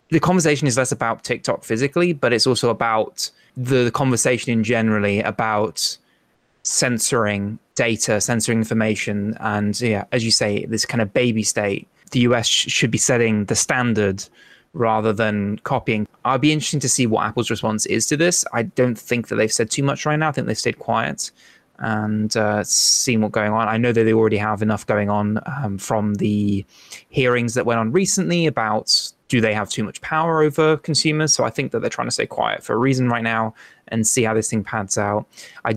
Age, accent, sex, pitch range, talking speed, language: 20-39, British, male, 110-140 Hz, 205 wpm, English